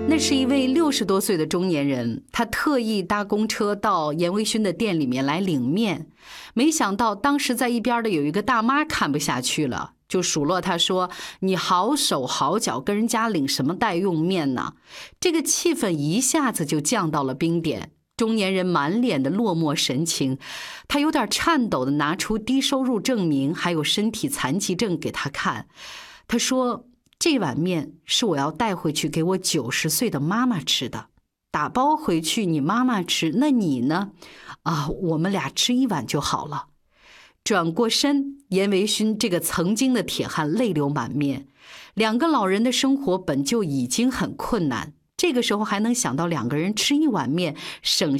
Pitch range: 160-255 Hz